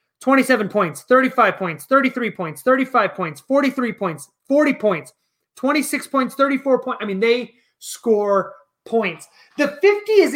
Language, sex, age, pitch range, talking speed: English, male, 30-49, 190-255 Hz, 140 wpm